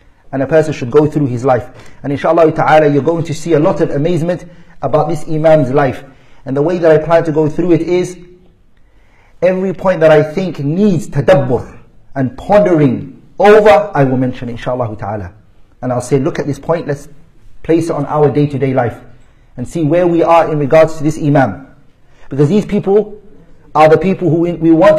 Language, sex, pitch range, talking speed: English, male, 135-170 Hz, 195 wpm